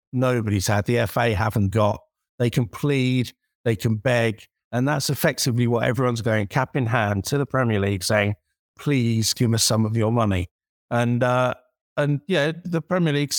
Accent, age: British, 50-69